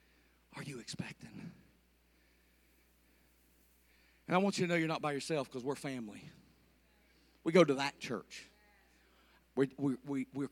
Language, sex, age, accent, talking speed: English, male, 50-69, American, 130 wpm